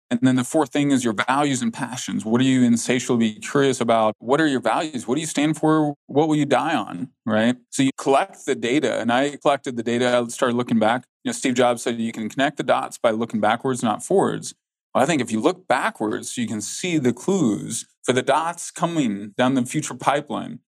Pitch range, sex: 125-155 Hz, male